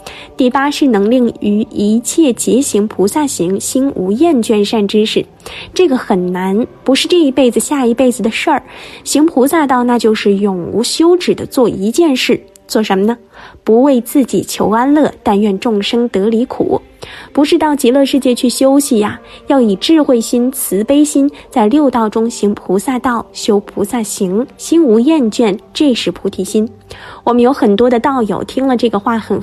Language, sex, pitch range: Chinese, female, 215-285 Hz